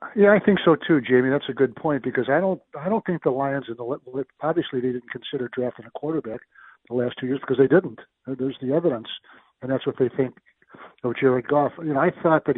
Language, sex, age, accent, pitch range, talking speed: English, male, 60-79, American, 125-145 Hz, 250 wpm